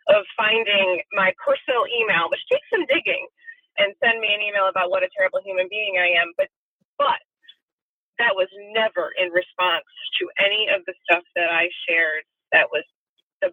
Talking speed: 175 wpm